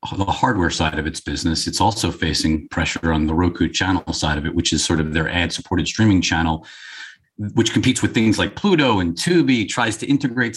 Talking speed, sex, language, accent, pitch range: 210 wpm, male, English, American, 95-120 Hz